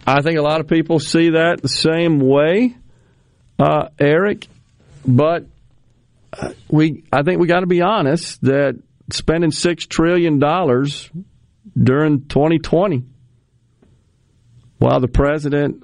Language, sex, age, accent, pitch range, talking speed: English, male, 50-69, American, 120-145 Hz, 115 wpm